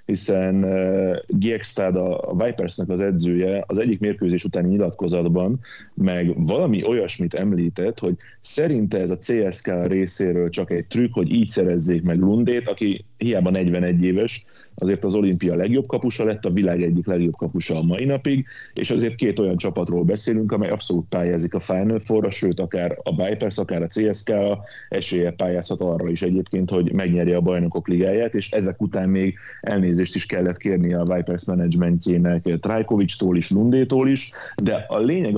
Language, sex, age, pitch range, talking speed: Hungarian, male, 30-49, 85-105 Hz, 160 wpm